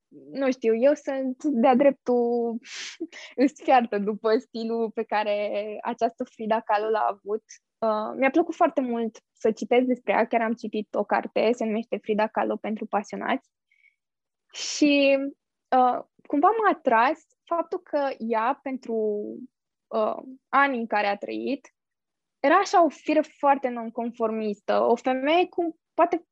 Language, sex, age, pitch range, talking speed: Romanian, female, 10-29, 220-280 Hz, 140 wpm